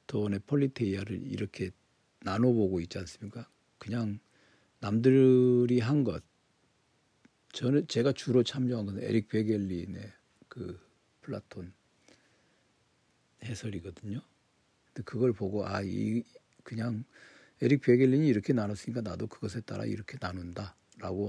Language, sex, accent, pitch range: Korean, male, native, 100-120 Hz